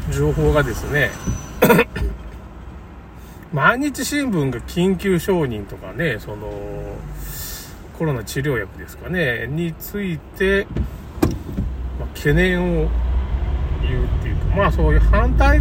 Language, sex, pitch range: Japanese, male, 70-105 Hz